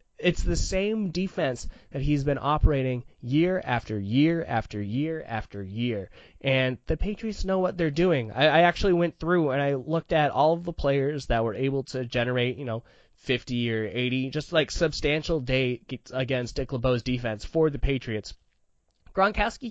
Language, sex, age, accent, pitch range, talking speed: English, male, 20-39, American, 130-175 Hz, 175 wpm